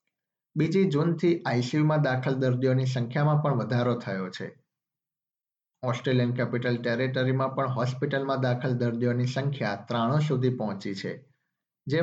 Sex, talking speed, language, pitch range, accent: male, 115 wpm, Gujarati, 120-145 Hz, native